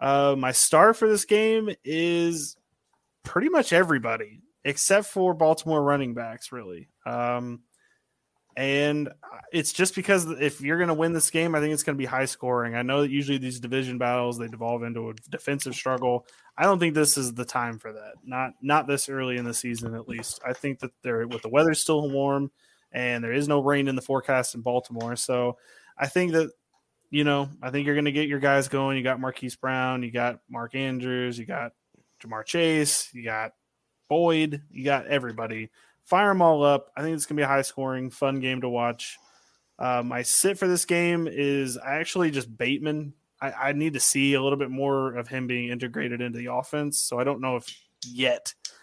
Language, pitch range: English, 125-150 Hz